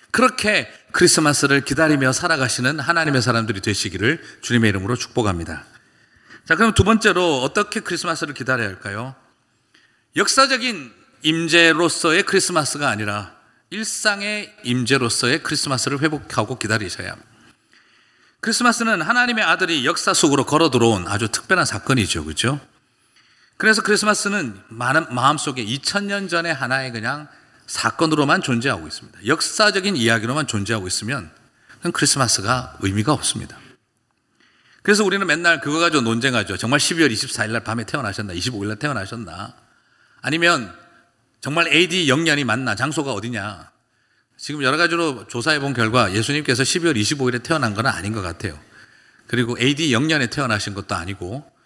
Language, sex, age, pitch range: Korean, male, 40-59, 115-165 Hz